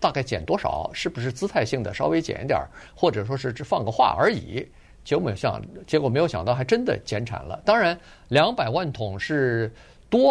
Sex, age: male, 50-69